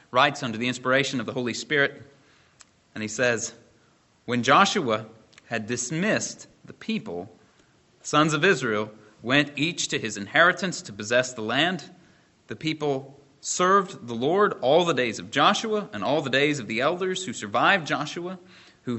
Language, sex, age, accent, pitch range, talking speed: English, male, 30-49, American, 115-160 Hz, 160 wpm